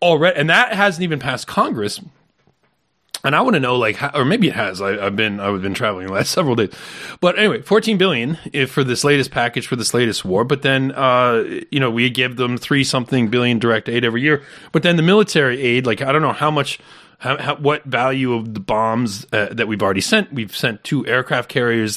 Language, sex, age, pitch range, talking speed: English, male, 30-49, 110-145 Hz, 230 wpm